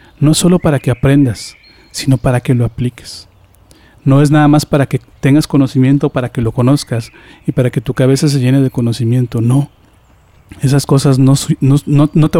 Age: 40-59